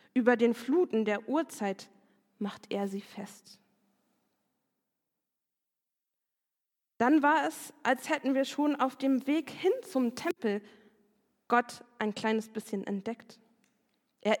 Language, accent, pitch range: German, German, 205-250 Hz